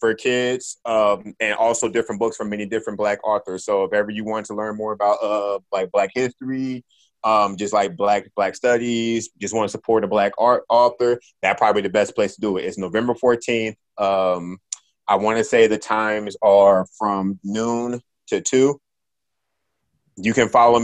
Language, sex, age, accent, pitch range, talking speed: English, male, 20-39, American, 100-115 Hz, 185 wpm